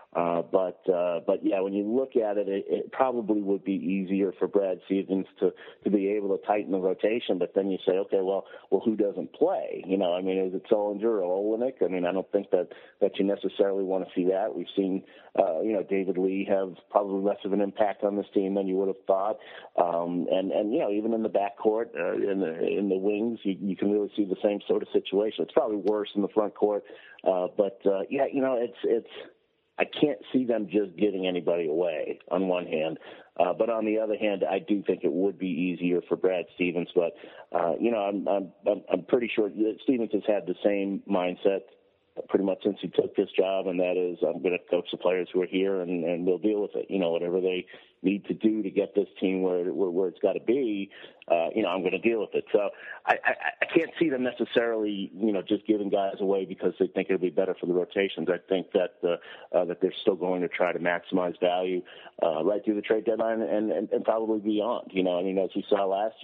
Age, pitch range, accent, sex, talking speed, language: 50-69, 95-105 Hz, American, male, 245 wpm, English